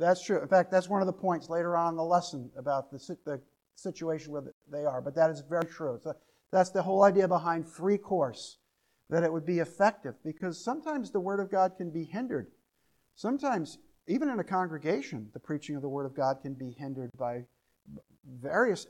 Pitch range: 150-190 Hz